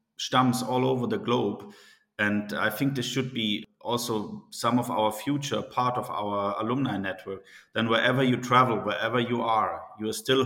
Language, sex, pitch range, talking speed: English, male, 105-120 Hz, 170 wpm